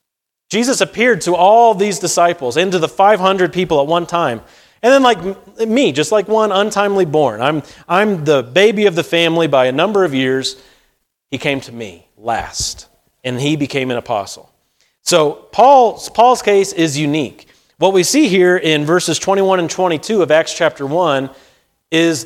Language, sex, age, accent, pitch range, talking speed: English, male, 30-49, American, 140-190 Hz, 175 wpm